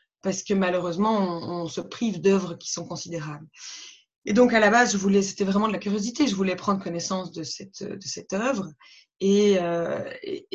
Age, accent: 20-39, French